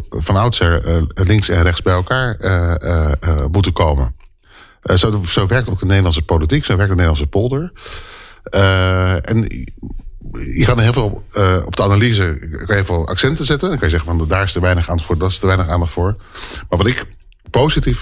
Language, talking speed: Dutch, 205 wpm